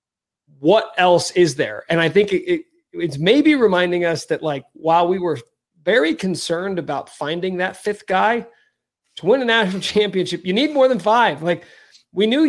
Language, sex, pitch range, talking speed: English, male, 155-195 Hz, 175 wpm